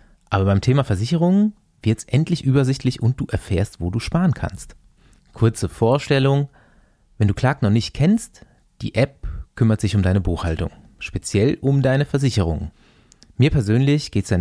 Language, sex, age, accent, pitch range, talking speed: German, male, 30-49, German, 95-125 Hz, 160 wpm